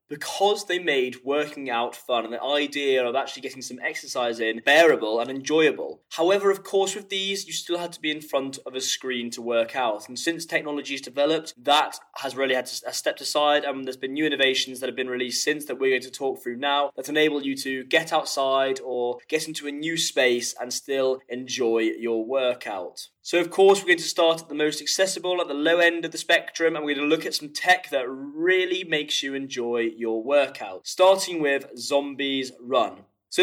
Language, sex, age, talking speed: English, male, 10-29, 215 wpm